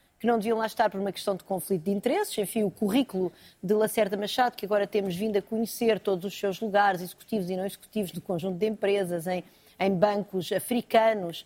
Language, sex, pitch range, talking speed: Portuguese, female, 200-255 Hz, 215 wpm